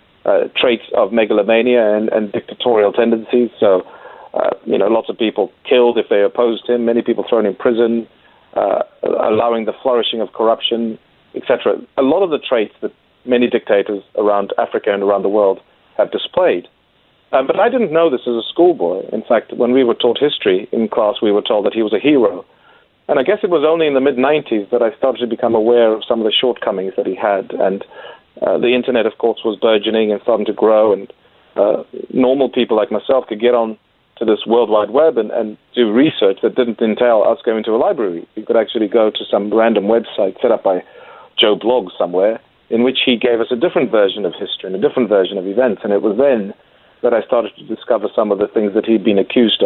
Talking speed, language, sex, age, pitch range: 220 wpm, English, male, 40-59, 110-125 Hz